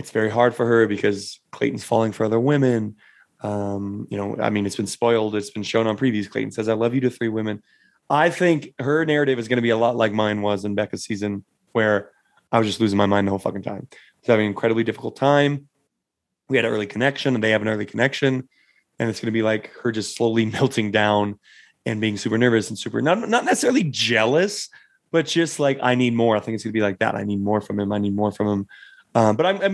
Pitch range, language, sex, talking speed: 110-130 Hz, English, male, 255 wpm